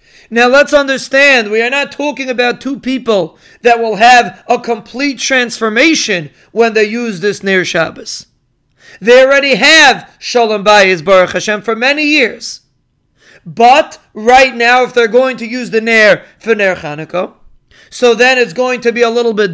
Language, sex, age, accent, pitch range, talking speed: English, male, 30-49, American, 230-265 Hz, 165 wpm